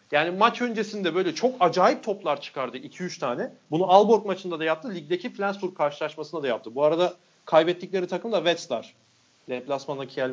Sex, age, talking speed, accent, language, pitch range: male, 40-59, 165 wpm, native, Turkish, 160-225 Hz